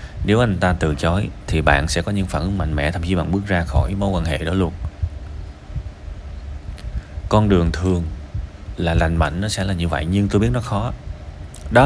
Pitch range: 80-100 Hz